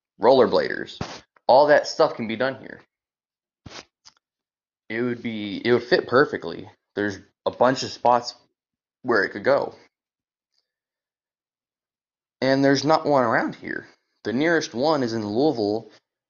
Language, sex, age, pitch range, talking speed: English, male, 20-39, 95-130 Hz, 135 wpm